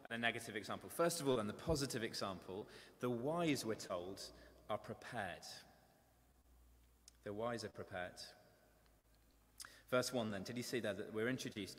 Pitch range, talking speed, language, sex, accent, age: 110-140 Hz, 160 wpm, English, male, British, 20-39